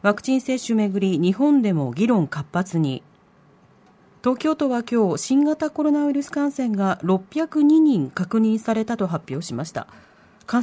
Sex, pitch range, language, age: female, 185-255 Hz, Japanese, 40-59